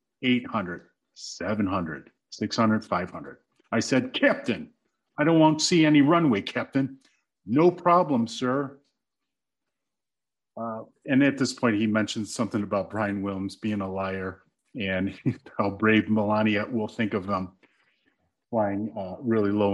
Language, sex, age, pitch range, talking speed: English, male, 40-59, 105-150 Hz, 135 wpm